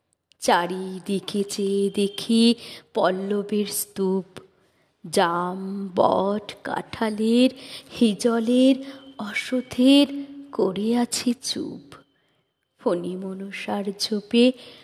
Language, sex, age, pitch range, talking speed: Bengali, female, 30-49, 200-265 Hz, 65 wpm